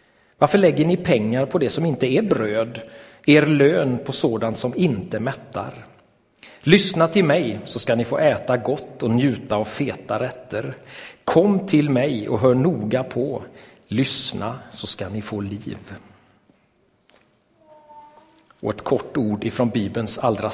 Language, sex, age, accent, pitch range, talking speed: Swedish, male, 40-59, native, 110-145 Hz, 150 wpm